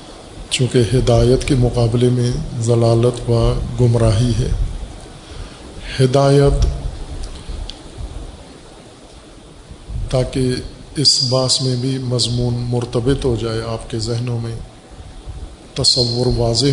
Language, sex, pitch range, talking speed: Urdu, male, 115-130 Hz, 90 wpm